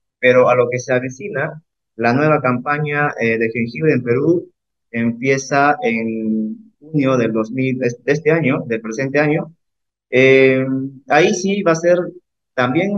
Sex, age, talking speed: male, 30-49, 140 wpm